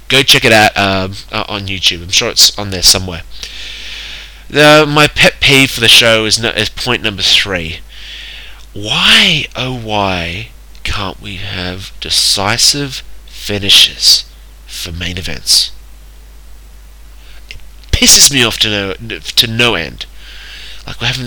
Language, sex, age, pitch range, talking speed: English, male, 20-39, 85-120 Hz, 140 wpm